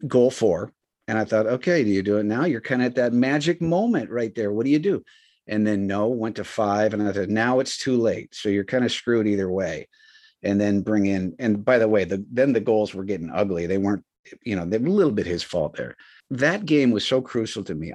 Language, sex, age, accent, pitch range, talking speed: English, male, 50-69, American, 100-125 Hz, 260 wpm